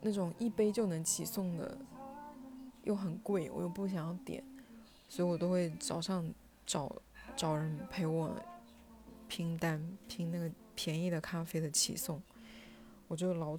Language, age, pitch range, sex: Chinese, 20-39, 160-190 Hz, female